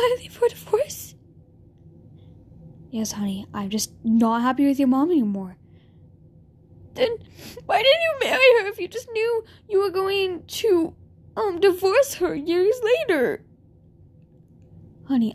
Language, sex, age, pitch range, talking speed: English, female, 10-29, 265-360 Hz, 135 wpm